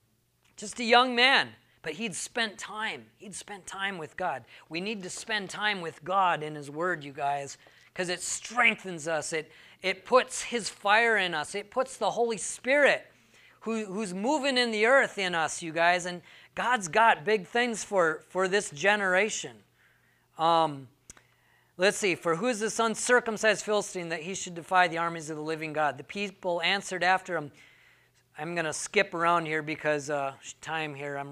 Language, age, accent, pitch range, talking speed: English, 30-49, American, 155-215 Hz, 180 wpm